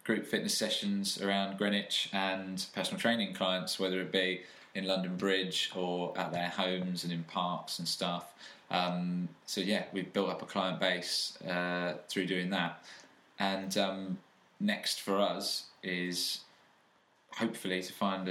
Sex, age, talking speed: male, 20-39, 150 wpm